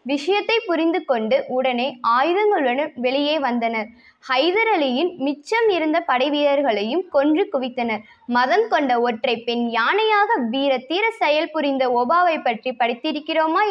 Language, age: Tamil, 20-39